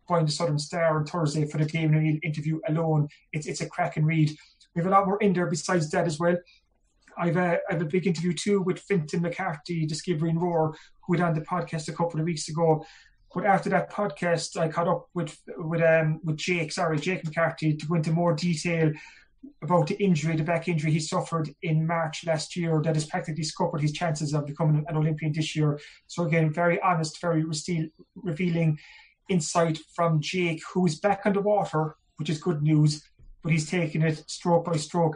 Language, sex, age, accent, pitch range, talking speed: English, male, 30-49, British, 155-180 Hz, 205 wpm